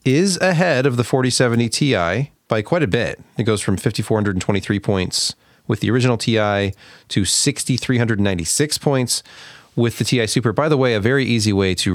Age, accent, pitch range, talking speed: 30-49, American, 90-120 Hz, 170 wpm